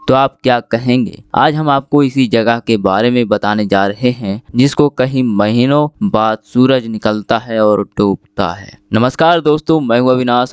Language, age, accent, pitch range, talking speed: Hindi, 20-39, native, 115-135 Hz, 170 wpm